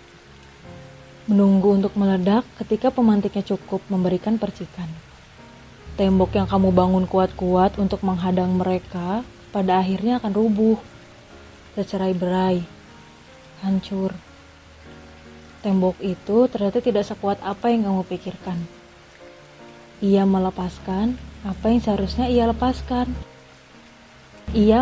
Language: Indonesian